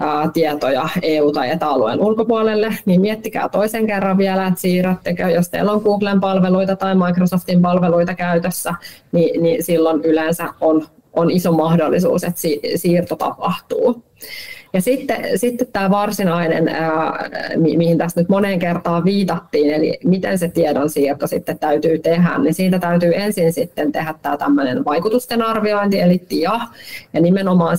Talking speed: 140 wpm